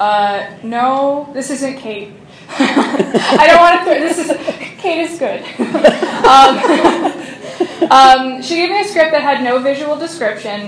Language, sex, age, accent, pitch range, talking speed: English, female, 20-39, American, 205-270 Hz, 145 wpm